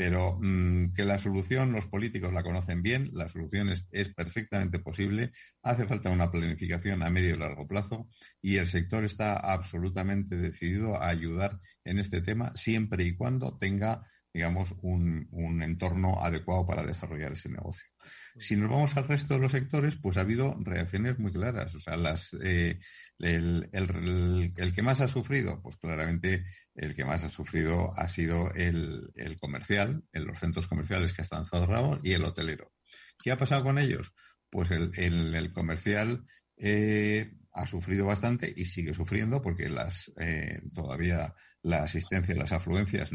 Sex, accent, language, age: male, Spanish, Spanish, 50-69